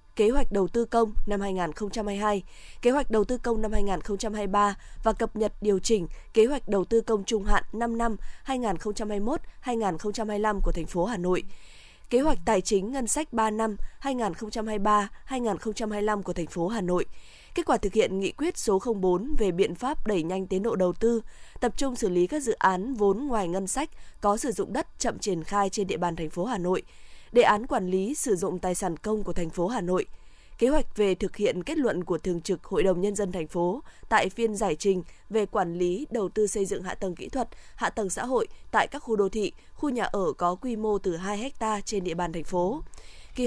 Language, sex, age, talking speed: Vietnamese, female, 20-39, 220 wpm